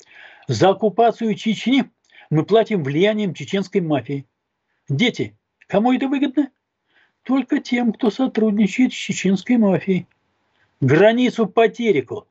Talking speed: 100 wpm